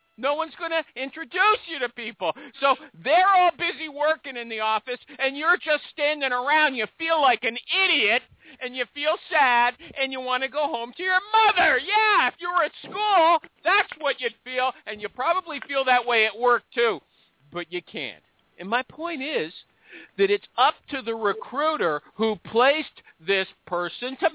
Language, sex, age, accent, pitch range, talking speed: English, male, 50-69, American, 225-325 Hz, 185 wpm